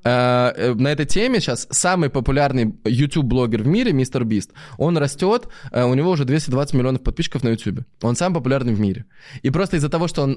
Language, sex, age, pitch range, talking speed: Russian, male, 20-39, 115-155 Hz, 185 wpm